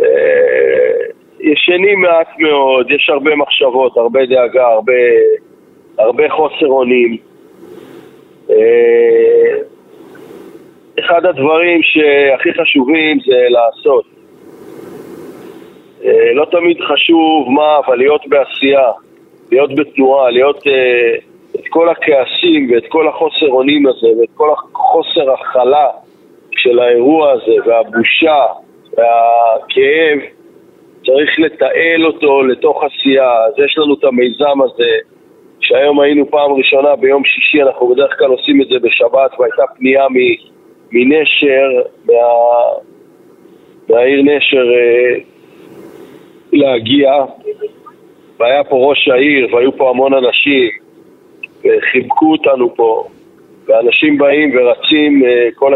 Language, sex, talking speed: Hebrew, male, 100 wpm